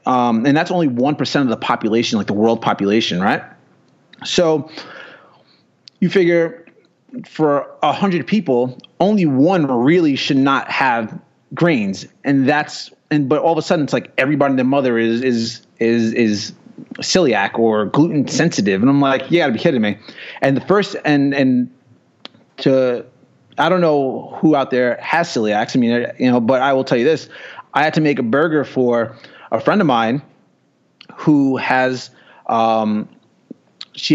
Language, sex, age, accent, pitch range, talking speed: English, male, 30-49, American, 125-155 Hz, 170 wpm